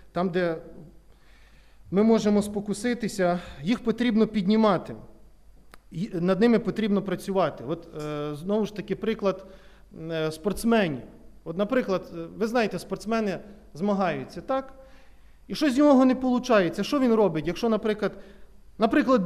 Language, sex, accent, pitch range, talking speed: Ukrainian, male, native, 175-235 Hz, 110 wpm